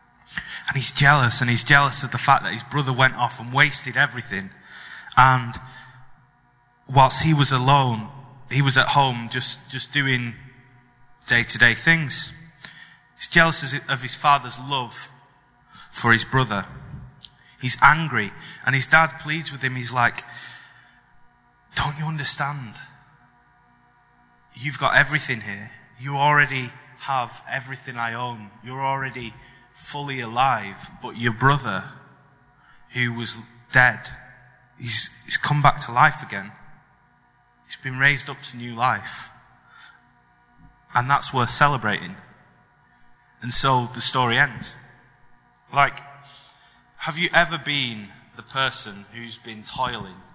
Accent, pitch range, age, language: British, 120-140 Hz, 20-39, English